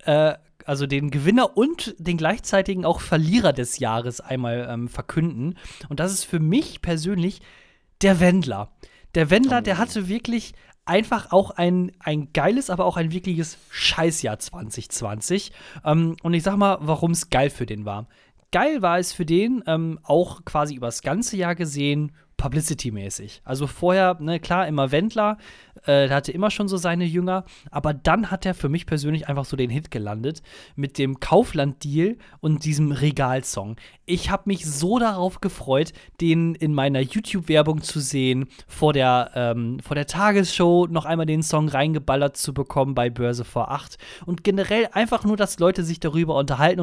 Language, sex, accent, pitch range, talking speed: German, male, German, 140-185 Hz, 165 wpm